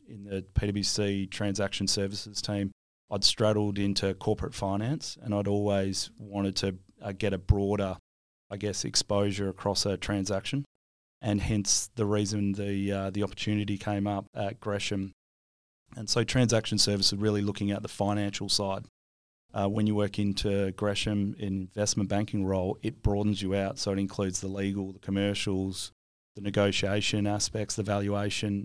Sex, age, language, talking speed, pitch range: male, 30-49, English, 155 wpm, 95-105 Hz